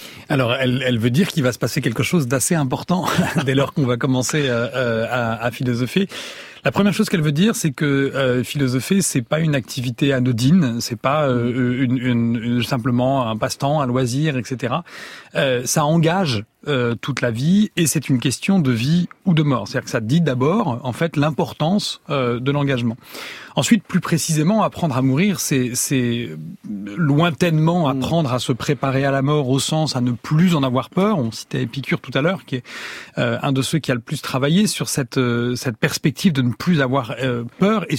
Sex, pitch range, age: male, 130-165 Hz, 30-49